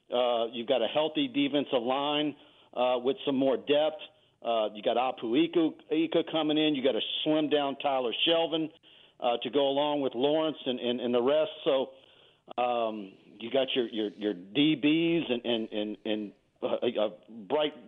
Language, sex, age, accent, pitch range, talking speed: English, male, 50-69, American, 125-155 Hz, 180 wpm